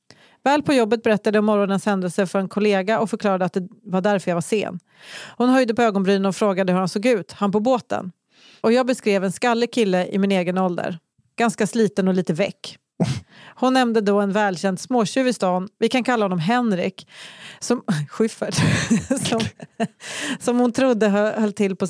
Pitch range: 190-230 Hz